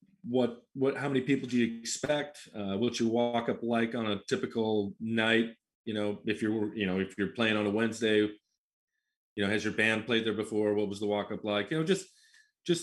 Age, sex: 30-49, male